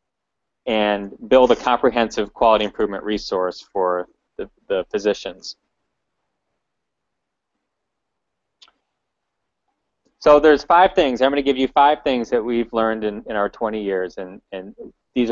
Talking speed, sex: 125 wpm, male